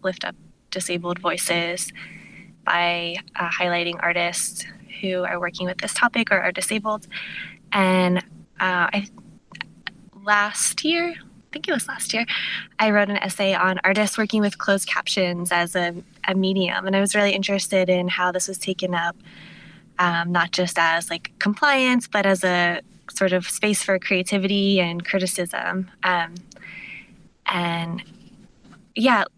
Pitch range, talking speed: 180-200 Hz, 145 wpm